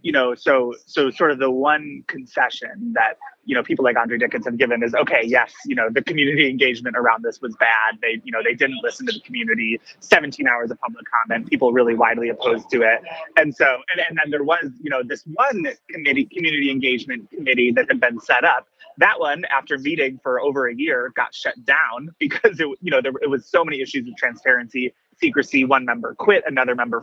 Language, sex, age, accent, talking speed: English, male, 20-39, American, 220 wpm